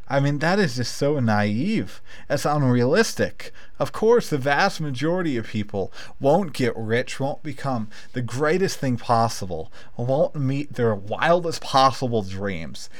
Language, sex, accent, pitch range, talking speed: English, male, American, 115-150 Hz, 145 wpm